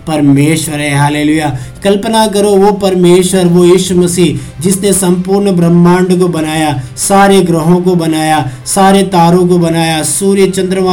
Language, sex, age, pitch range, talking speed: Hindi, male, 50-69, 160-185 Hz, 135 wpm